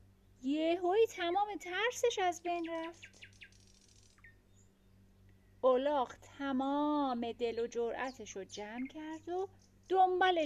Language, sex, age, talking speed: Persian, female, 30-49, 85 wpm